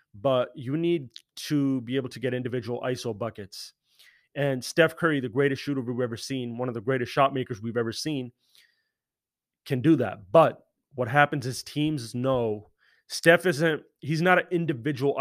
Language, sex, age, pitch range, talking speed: English, male, 30-49, 125-150 Hz, 175 wpm